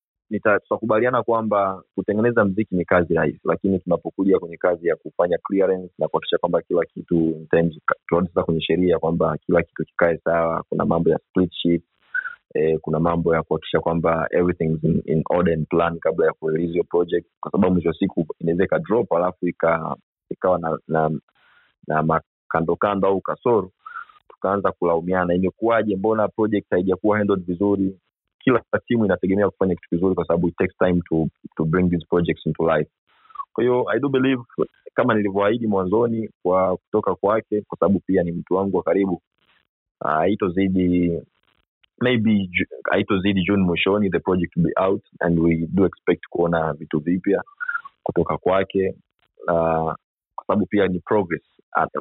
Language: Swahili